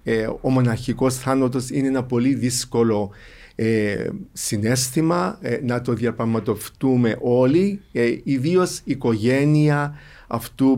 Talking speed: 105 wpm